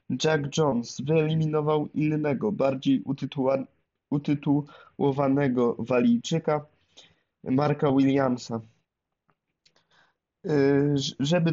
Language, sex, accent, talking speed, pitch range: Polish, male, native, 50 wpm, 130-155 Hz